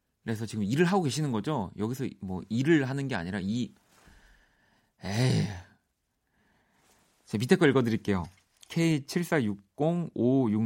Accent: native